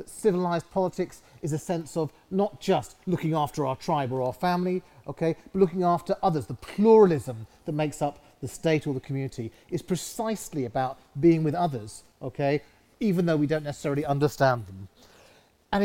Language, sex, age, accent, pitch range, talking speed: English, male, 40-59, British, 130-175 Hz, 175 wpm